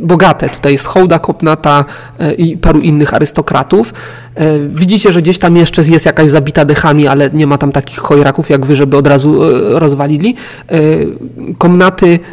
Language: Polish